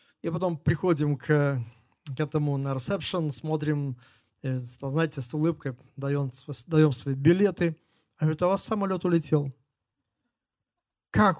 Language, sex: Russian, male